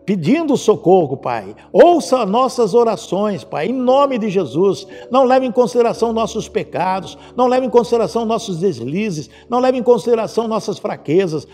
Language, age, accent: Portuguese, 60-79, Brazilian